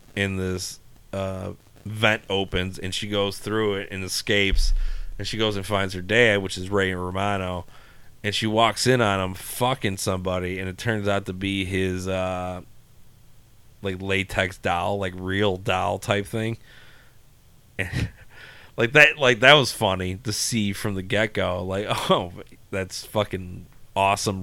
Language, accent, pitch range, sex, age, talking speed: English, American, 95-110 Hz, male, 30-49, 160 wpm